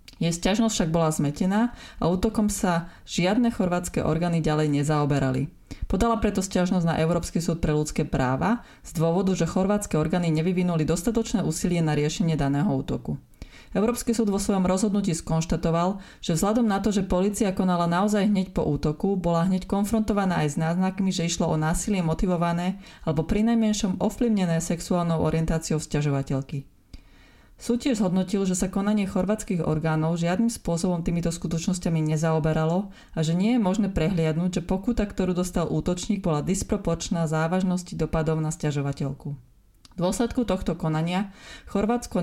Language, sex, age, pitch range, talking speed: Slovak, female, 30-49, 160-195 Hz, 145 wpm